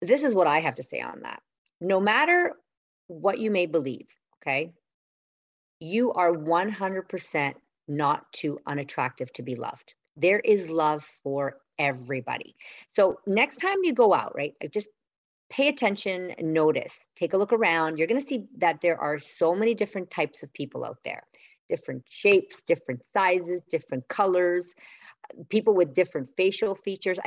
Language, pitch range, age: English, 150-210 Hz, 50-69